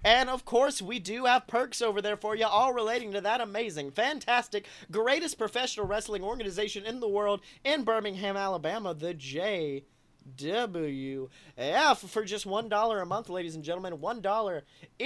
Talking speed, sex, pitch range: 150 wpm, male, 180-240 Hz